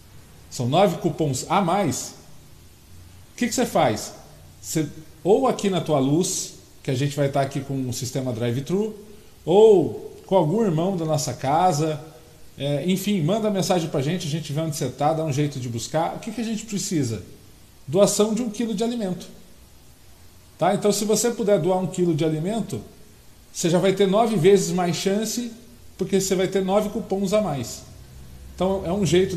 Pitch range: 140-195 Hz